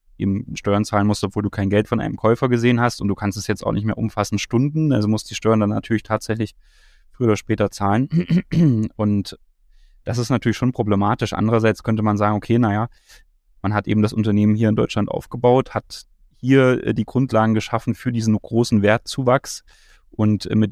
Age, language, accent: 20-39, German, German